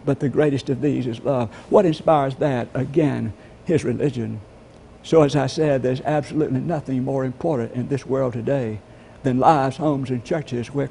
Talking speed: 175 wpm